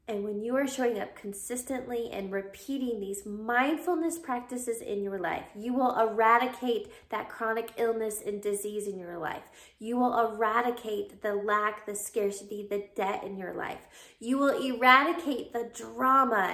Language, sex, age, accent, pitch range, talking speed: English, female, 20-39, American, 205-245 Hz, 155 wpm